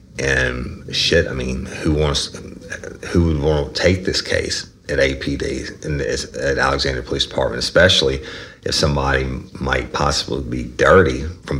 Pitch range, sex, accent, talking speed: 65-85 Hz, male, American, 140 wpm